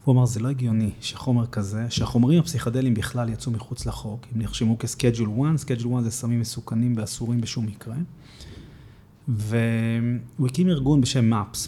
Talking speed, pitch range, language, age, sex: 155 wpm, 115-135 Hz, Hebrew, 30-49, male